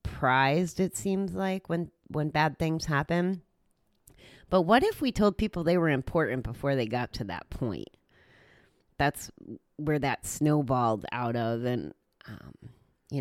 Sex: female